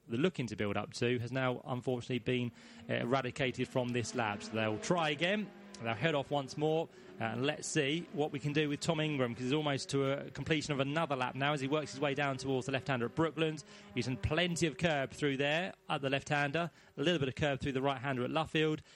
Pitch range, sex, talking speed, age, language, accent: 135-170 Hz, male, 235 wpm, 30-49, English, British